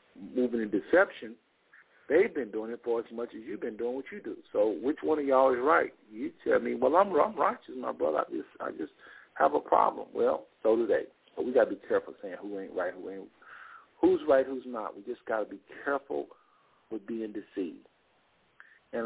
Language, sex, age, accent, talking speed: English, male, 50-69, American, 215 wpm